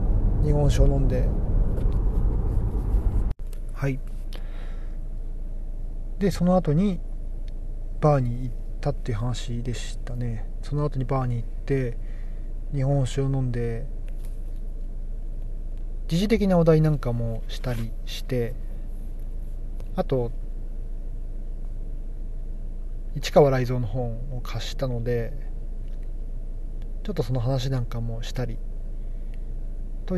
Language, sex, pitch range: Japanese, male, 110-140 Hz